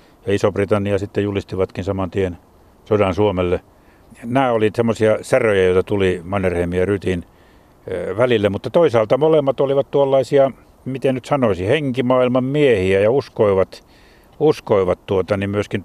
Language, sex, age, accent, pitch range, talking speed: Finnish, male, 50-69, native, 90-110 Hz, 125 wpm